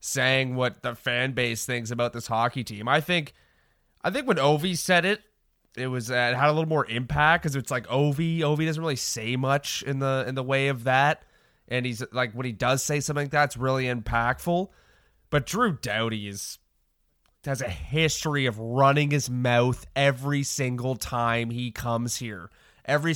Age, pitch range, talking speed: 20-39, 115-145 Hz, 190 wpm